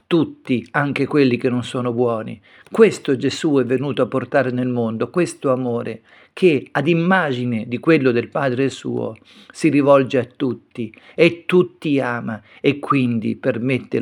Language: Italian